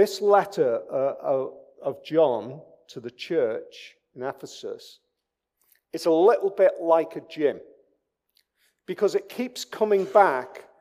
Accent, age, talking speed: British, 40-59, 115 wpm